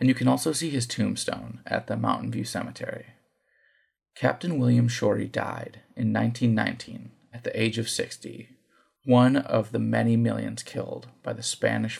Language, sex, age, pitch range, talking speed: English, male, 30-49, 115-140 Hz, 160 wpm